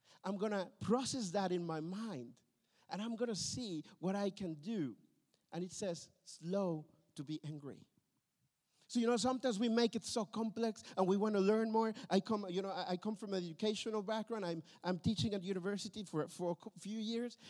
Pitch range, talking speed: 175-225 Hz, 195 wpm